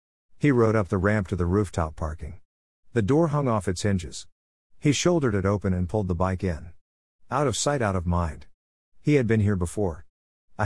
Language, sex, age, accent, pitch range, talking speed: English, male, 50-69, American, 85-120 Hz, 205 wpm